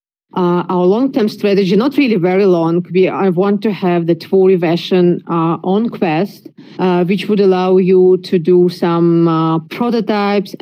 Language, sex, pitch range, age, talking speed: English, female, 170-195 Hz, 30-49, 165 wpm